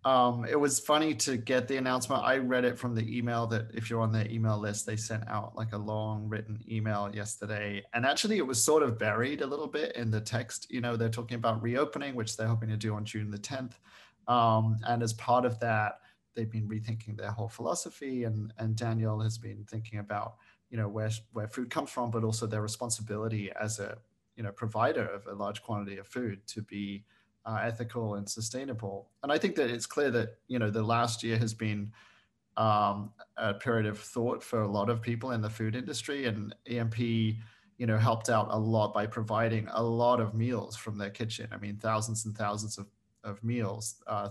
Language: English